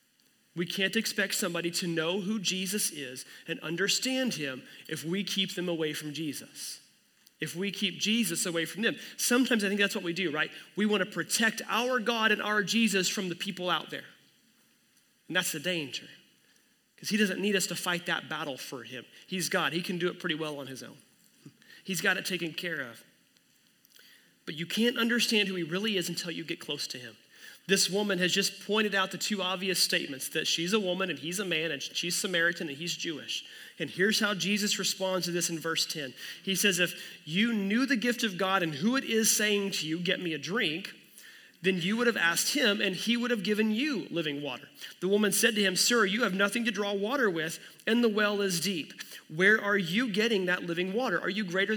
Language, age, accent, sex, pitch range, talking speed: English, 30-49, American, male, 170-215 Hz, 220 wpm